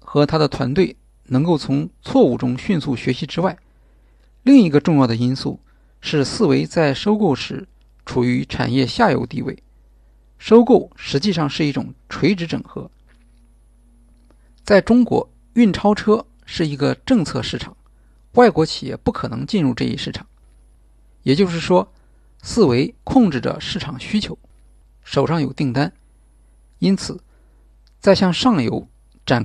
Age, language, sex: 50-69, Chinese, male